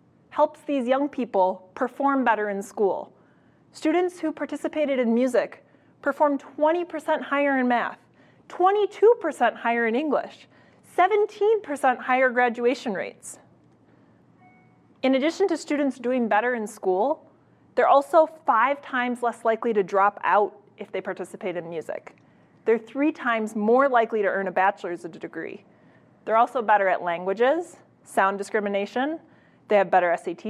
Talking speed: 135 wpm